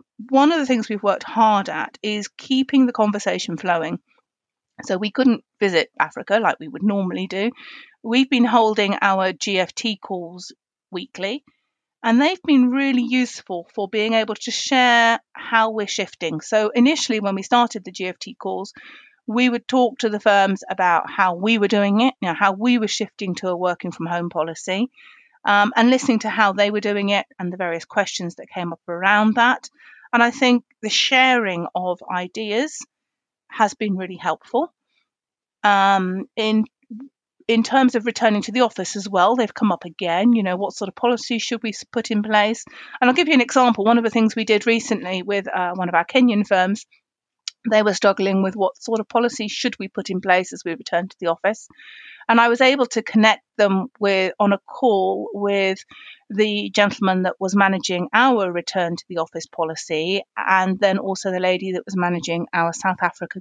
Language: English